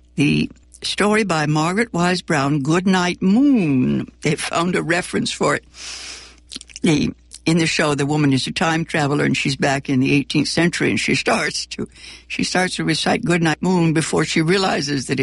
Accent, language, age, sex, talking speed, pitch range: American, English, 60-79, female, 180 wpm, 115-175 Hz